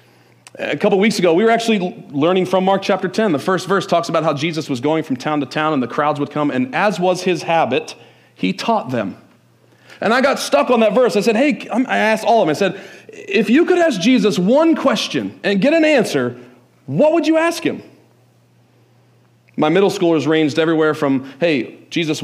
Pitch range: 140-195 Hz